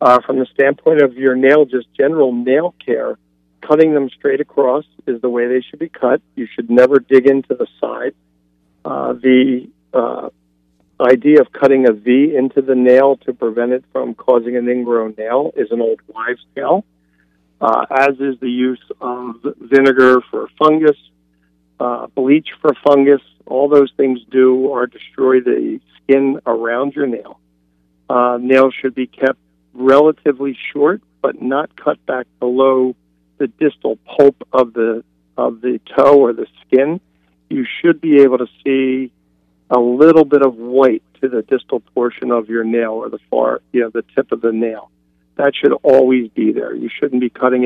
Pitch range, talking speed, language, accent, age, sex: 115-135 Hz, 170 wpm, English, American, 50-69, male